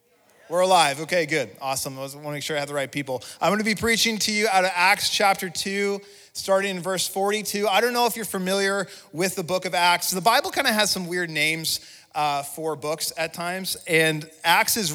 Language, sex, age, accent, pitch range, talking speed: English, male, 30-49, American, 165-195 Hz, 235 wpm